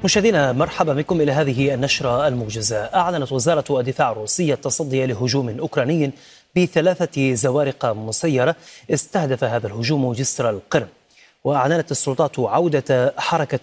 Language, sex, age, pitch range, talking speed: Arabic, male, 30-49, 130-170 Hz, 115 wpm